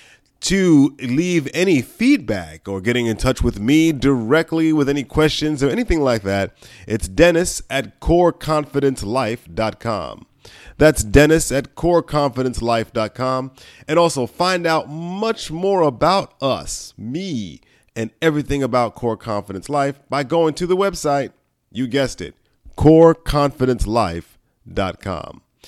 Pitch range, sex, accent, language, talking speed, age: 115-155 Hz, male, American, English, 120 wpm, 40-59